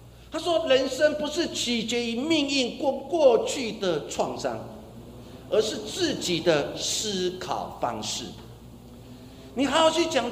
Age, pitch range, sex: 50-69, 170-275 Hz, male